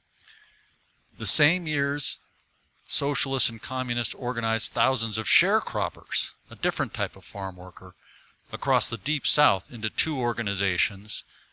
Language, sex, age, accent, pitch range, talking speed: English, male, 50-69, American, 115-150 Hz, 120 wpm